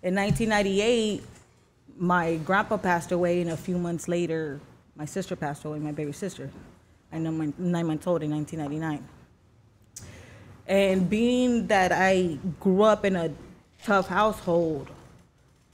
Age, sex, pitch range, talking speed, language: 20-39, female, 155-185 Hz, 135 wpm, English